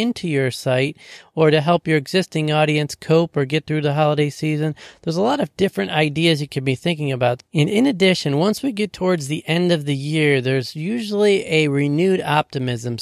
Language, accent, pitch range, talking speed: English, American, 145-170 Hz, 205 wpm